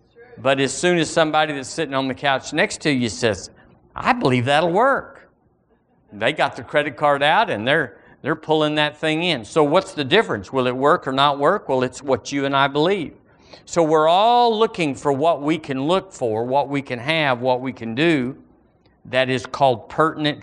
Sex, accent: male, American